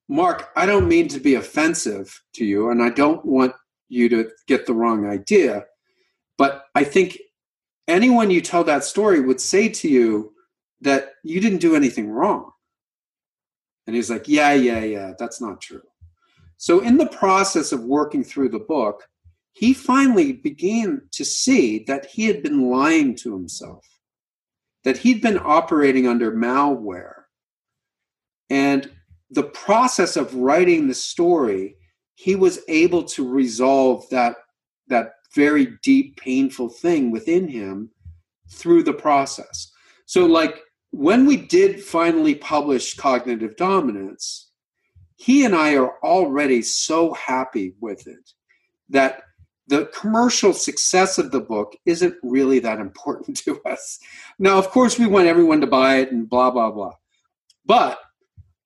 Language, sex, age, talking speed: English, male, 40-59, 145 wpm